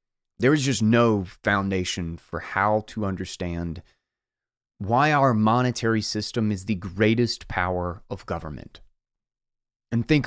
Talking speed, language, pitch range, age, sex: 125 wpm, English, 110-145 Hz, 30-49, male